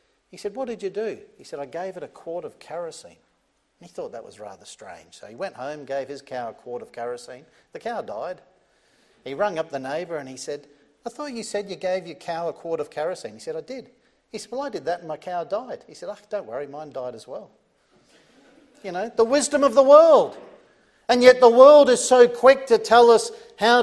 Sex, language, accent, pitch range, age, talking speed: male, English, Australian, 145-225 Hz, 50-69, 240 wpm